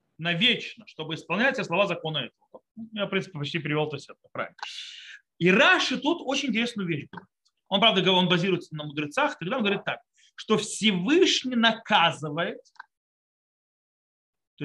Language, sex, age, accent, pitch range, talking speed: Russian, male, 30-49, native, 175-250 Hz, 150 wpm